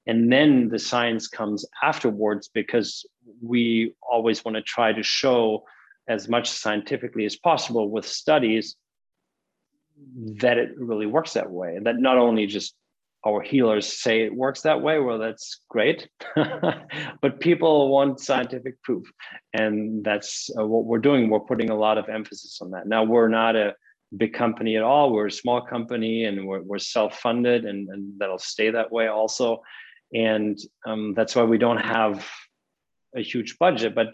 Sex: male